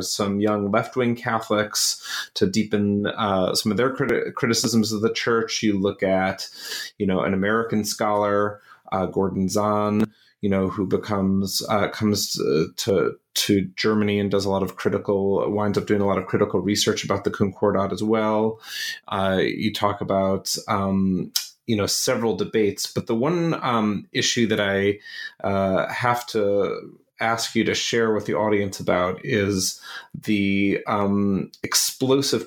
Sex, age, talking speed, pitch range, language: male, 30-49, 155 wpm, 100-115 Hz, English